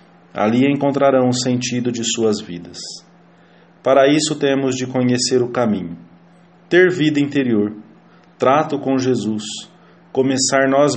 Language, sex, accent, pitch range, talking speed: English, male, Brazilian, 115-145 Hz, 120 wpm